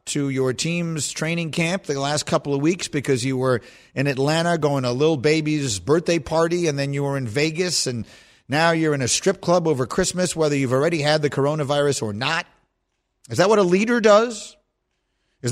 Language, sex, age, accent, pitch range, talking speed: English, male, 50-69, American, 135-175 Hz, 200 wpm